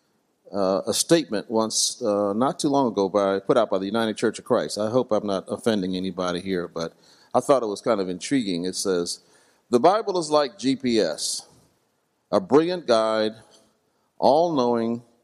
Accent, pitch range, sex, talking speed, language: American, 95-120 Hz, male, 175 wpm, English